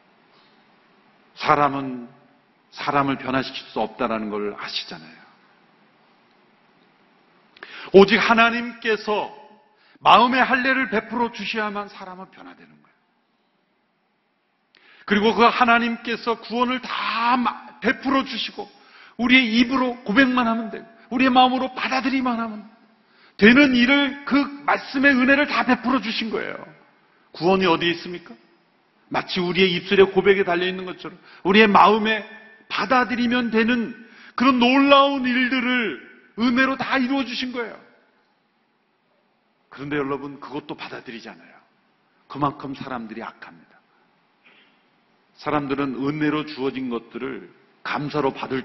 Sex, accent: male, native